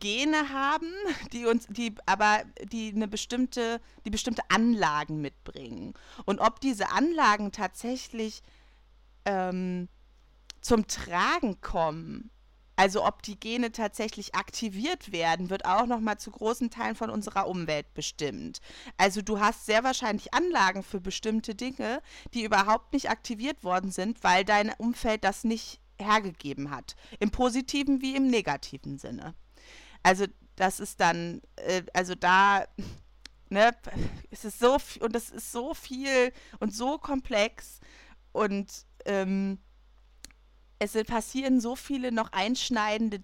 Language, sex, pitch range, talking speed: German, female, 195-240 Hz, 130 wpm